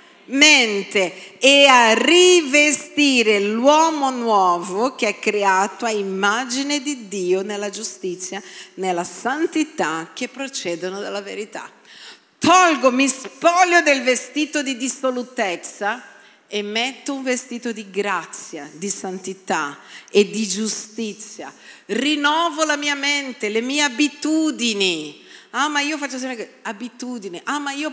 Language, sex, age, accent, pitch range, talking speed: Italian, female, 50-69, native, 200-280 Hz, 120 wpm